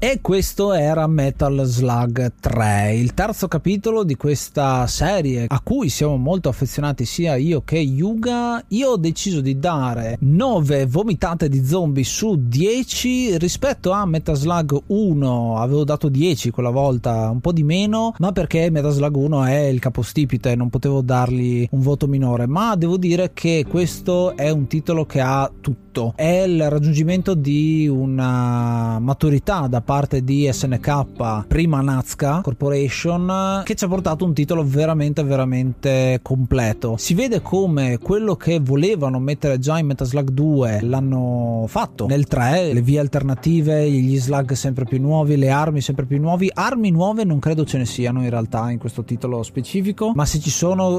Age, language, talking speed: 30-49, Italian, 165 wpm